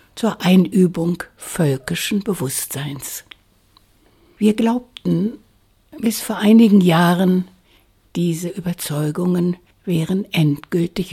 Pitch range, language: 150-200 Hz, German